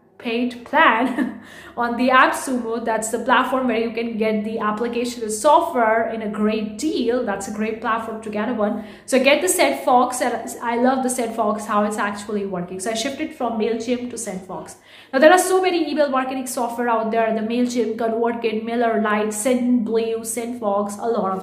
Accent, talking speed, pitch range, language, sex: Indian, 195 wpm, 220-260 Hz, English, female